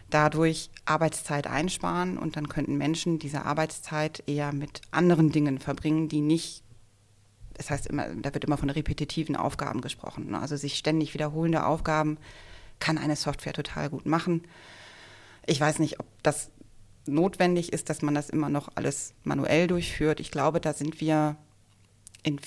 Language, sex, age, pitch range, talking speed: German, female, 30-49, 140-160 Hz, 160 wpm